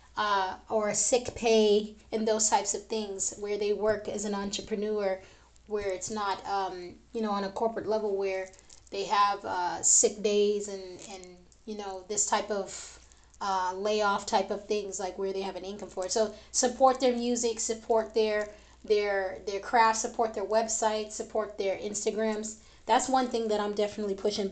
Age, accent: 20-39, American